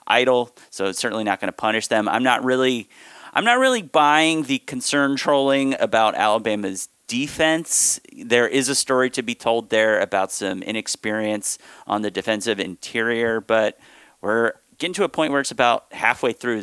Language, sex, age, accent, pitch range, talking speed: English, male, 30-49, American, 105-135 Hz, 170 wpm